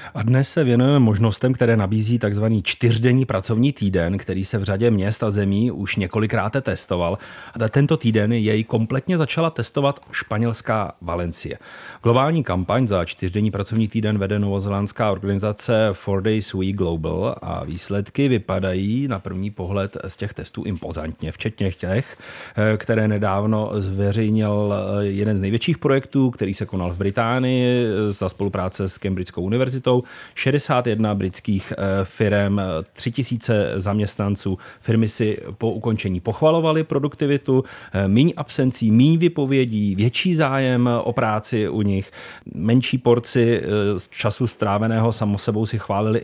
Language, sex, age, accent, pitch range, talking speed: Czech, male, 30-49, native, 100-125 Hz, 130 wpm